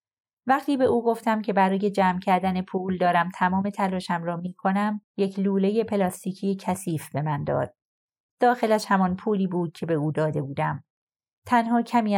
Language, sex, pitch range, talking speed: Persian, female, 165-205 Hz, 165 wpm